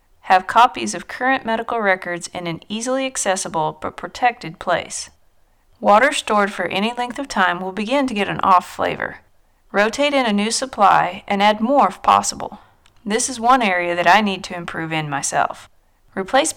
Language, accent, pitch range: English, American, 185-245 Hz